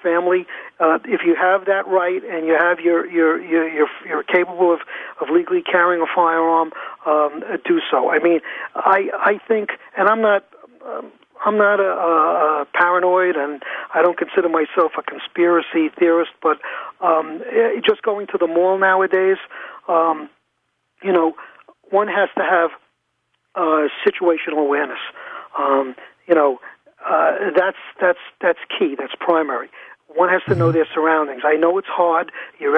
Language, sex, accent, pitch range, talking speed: English, male, American, 155-185 Hz, 155 wpm